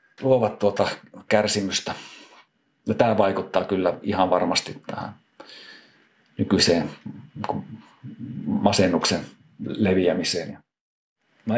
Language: Finnish